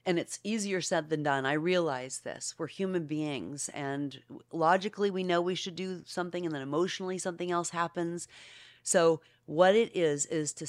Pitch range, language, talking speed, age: 145-190 Hz, English, 180 wpm, 40-59